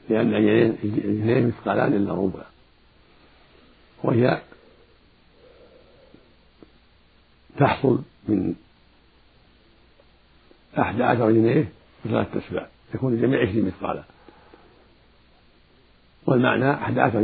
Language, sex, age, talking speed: Arabic, male, 50-69, 70 wpm